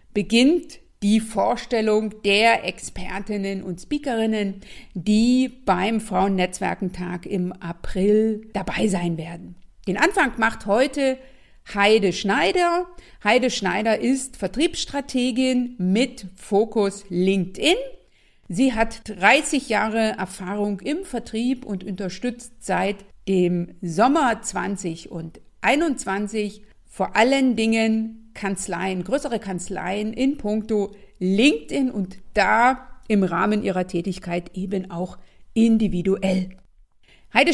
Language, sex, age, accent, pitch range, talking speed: German, female, 50-69, German, 190-240 Hz, 100 wpm